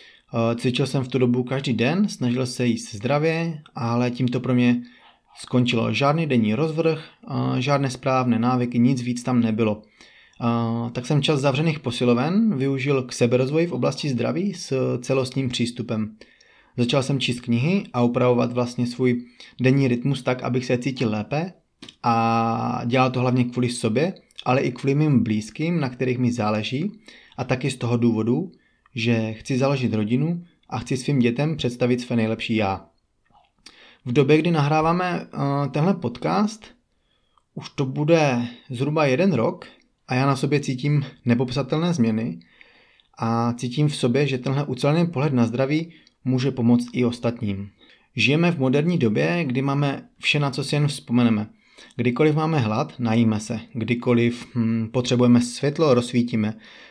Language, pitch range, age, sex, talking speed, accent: Czech, 120-145 Hz, 30-49, male, 150 wpm, native